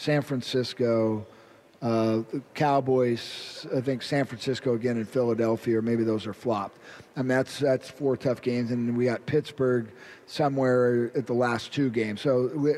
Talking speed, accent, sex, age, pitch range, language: 170 wpm, American, male, 50-69, 120-150 Hz, English